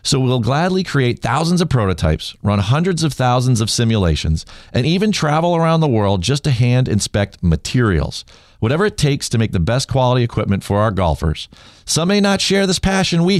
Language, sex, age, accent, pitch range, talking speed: English, male, 40-59, American, 105-150 Hz, 195 wpm